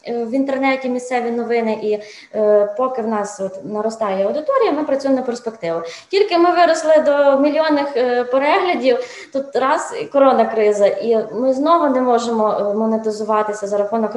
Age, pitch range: 20-39, 205-265 Hz